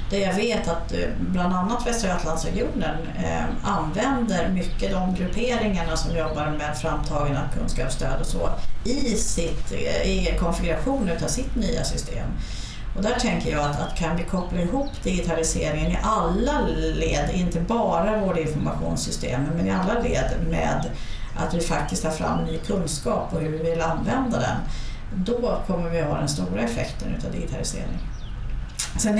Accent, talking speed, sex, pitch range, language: native, 150 wpm, female, 160-200 Hz, Swedish